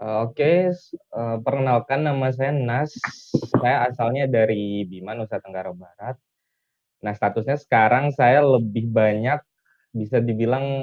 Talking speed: 110 wpm